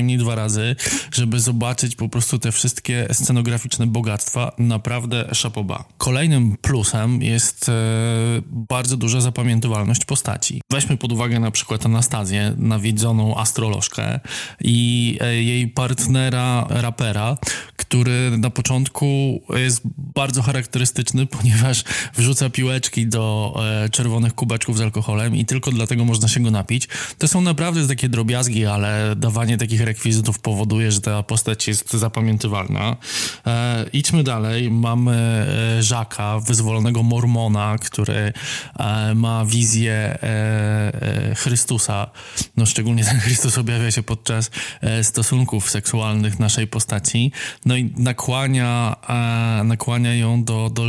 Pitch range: 110-125 Hz